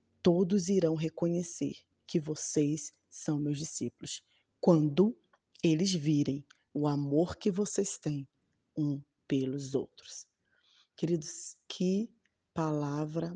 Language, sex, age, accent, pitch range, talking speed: Portuguese, female, 20-39, Brazilian, 150-180 Hz, 100 wpm